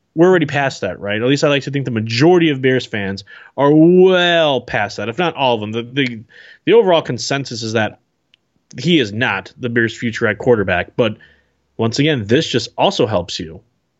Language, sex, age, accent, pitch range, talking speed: English, male, 20-39, American, 125-160 Hz, 205 wpm